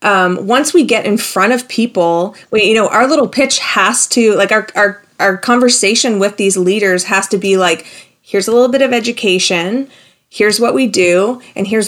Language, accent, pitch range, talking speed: English, American, 185-225 Hz, 195 wpm